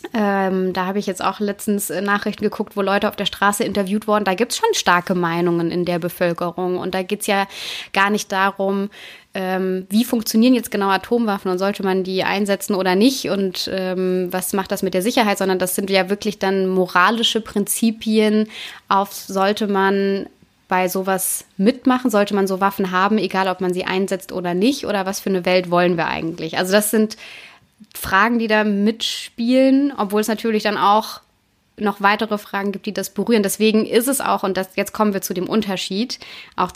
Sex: female